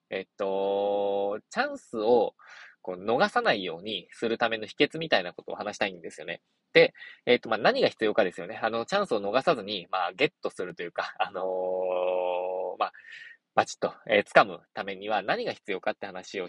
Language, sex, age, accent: Japanese, male, 20-39, native